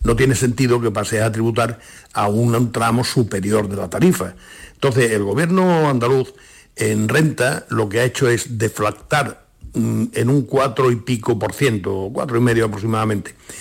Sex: male